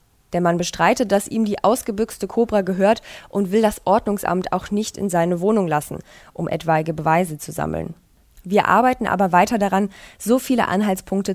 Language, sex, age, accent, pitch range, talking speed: German, female, 20-39, German, 175-200 Hz, 170 wpm